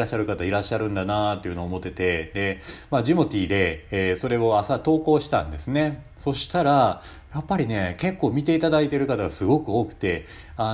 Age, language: 30-49, Japanese